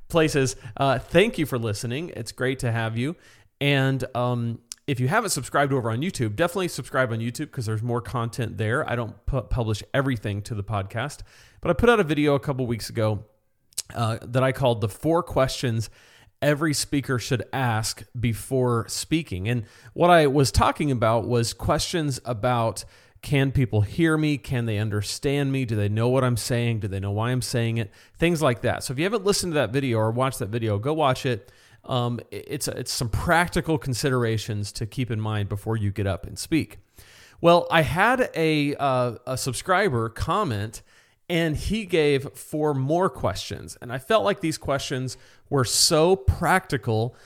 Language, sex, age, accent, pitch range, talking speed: English, male, 30-49, American, 110-140 Hz, 185 wpm